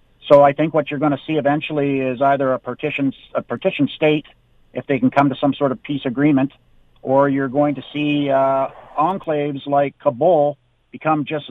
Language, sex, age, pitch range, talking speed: English, male, 50-69, 130-155 Hz, 195 wpm